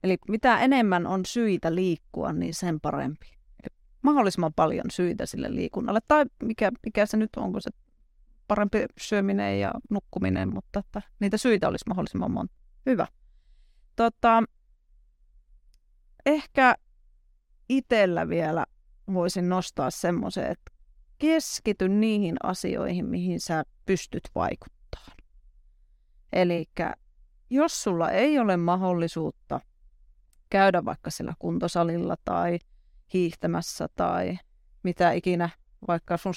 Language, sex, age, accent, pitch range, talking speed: Finnish, female, 30-49, native, 170-225 Hz, 105 wpm